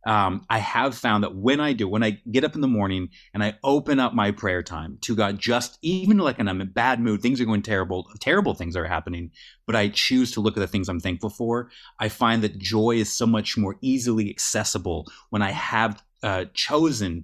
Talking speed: 235 wpm